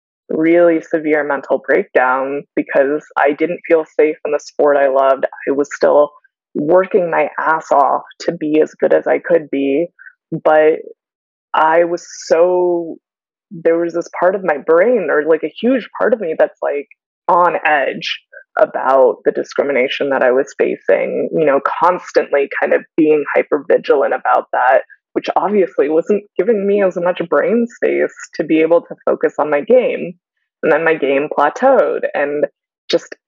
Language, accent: English, American